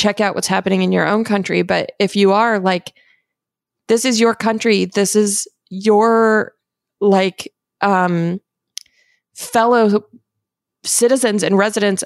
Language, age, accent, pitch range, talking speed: English, 20-39, American, 195-220 Hz, 130 wpm